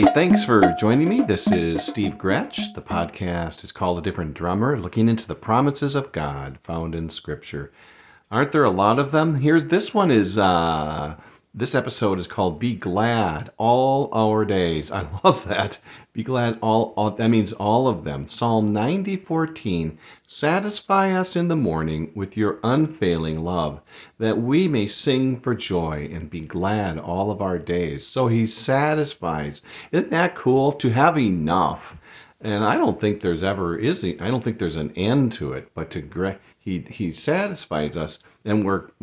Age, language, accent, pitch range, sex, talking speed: 50-69, English, American, 90-130 Hz, male, 170 wpm